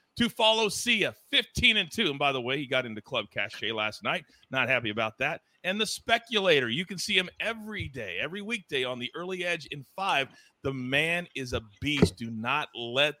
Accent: American